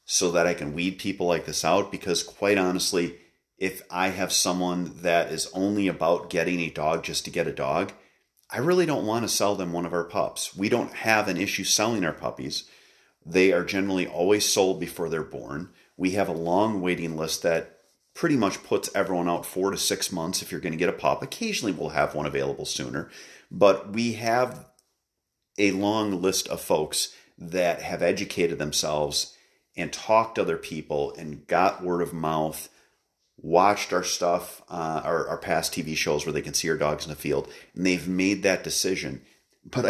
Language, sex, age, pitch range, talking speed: English, male, 40-59, 85-105 Hz, 195 wpm